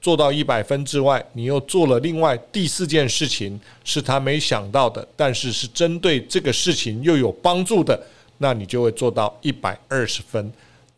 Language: Chinese